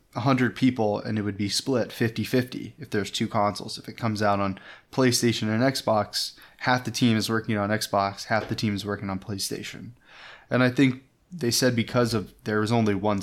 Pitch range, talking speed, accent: 105-120 Hz, 205 wpm, American